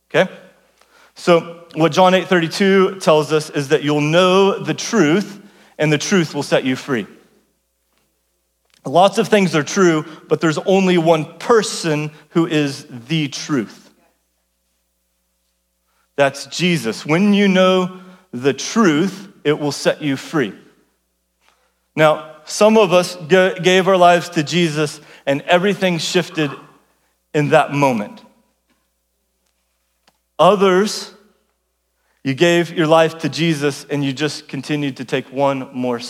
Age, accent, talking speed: 40-59, American, 130 wpm